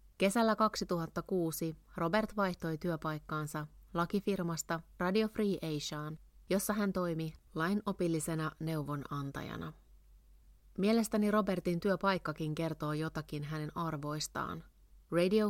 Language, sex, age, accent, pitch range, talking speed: Finnish, female, 30-49, native, 155-190 Hz, 85 wpm